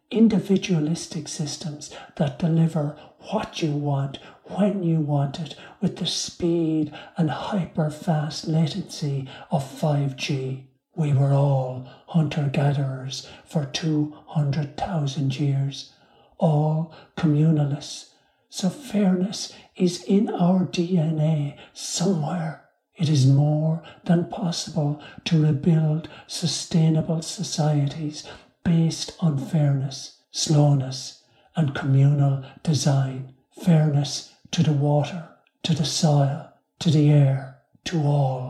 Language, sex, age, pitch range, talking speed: English, male, 60-79, 145-175 Hz, 100 wpm